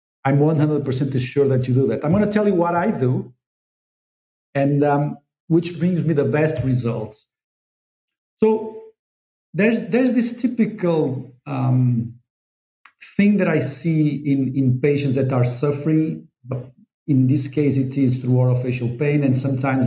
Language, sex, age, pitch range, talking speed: English, male, 50-69, 130-180 Hz, 150 wpm